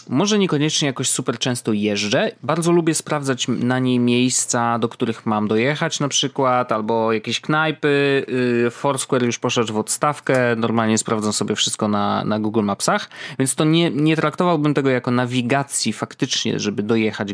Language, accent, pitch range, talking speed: Polish, native, 115-150 Hz, 155 wpm